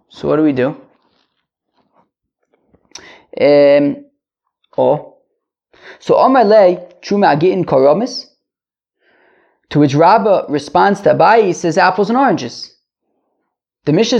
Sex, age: male, 20-39